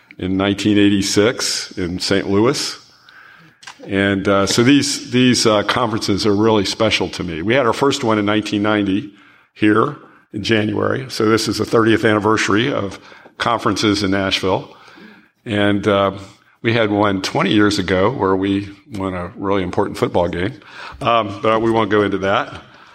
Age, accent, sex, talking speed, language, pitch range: 50-69, American, male, 155 wpm, English, 100-115 Hz